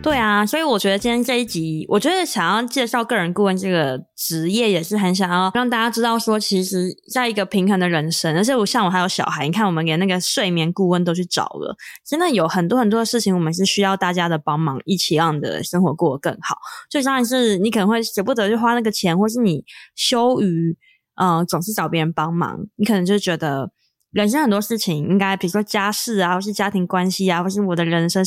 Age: 20-39